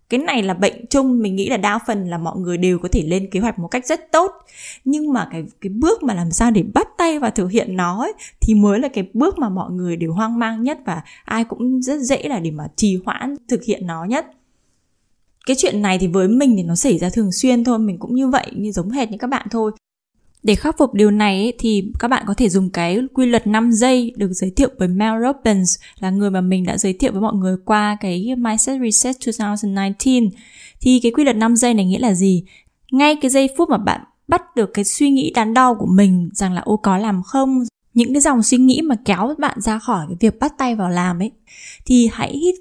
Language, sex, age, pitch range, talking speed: Vietnamese, female, 10-29, 195-255 Hz, 250 wpm